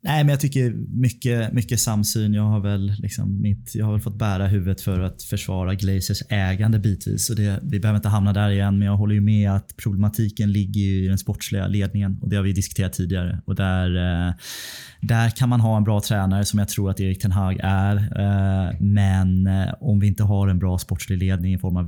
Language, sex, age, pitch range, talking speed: Swedish, male, 20-39, 95-105 Hz, 215 wpm